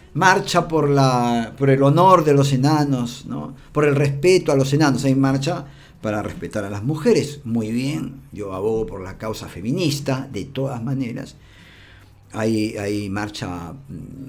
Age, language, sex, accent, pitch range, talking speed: 50-69, Spanish, male, Argentinian, 110-150 Hz, 145 wpm